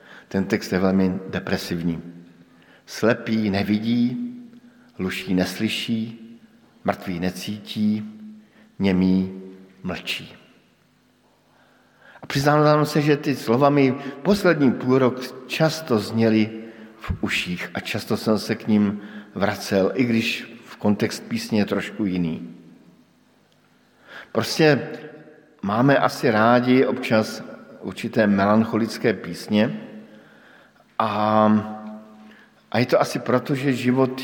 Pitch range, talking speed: 100-135 Hz, 100 wpm